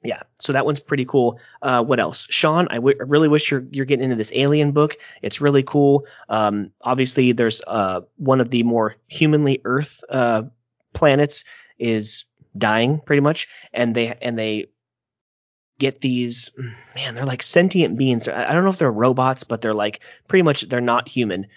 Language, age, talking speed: English, 30-49, 185 wpm